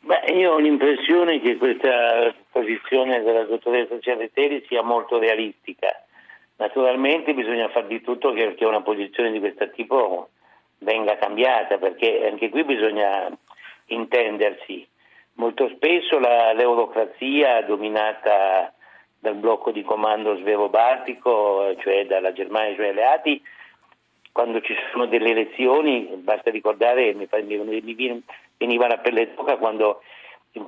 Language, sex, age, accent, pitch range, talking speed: Italian, male, 50-69, native, 110-135 Hz, 120 wpm